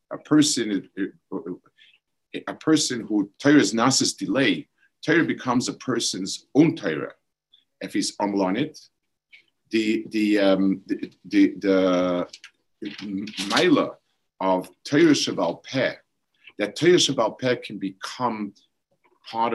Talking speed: 115 wpm